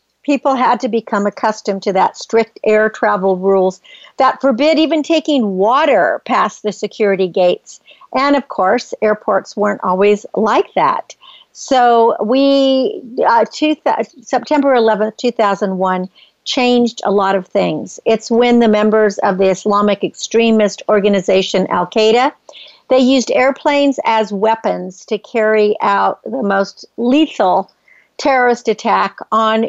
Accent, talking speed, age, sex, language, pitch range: American, 130 wpm, 50-69, female, English, 205-255 Hz